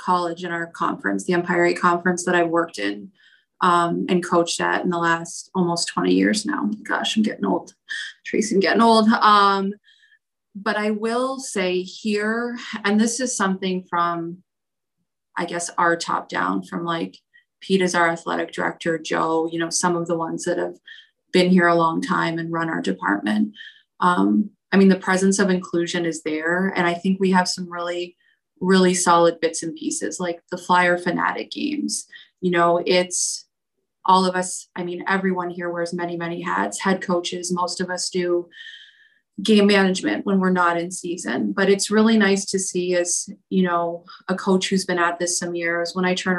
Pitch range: 170-195 Hz